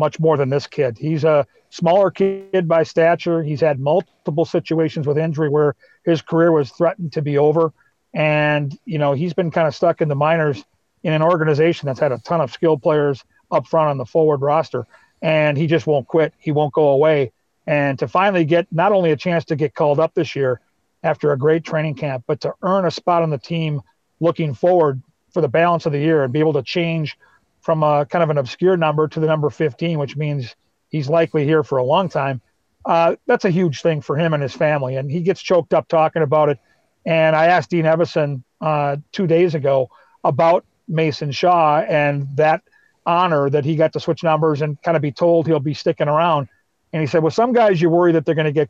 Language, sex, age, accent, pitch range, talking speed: English, male, 40-59, American, 150-170 Hz, 225 wpm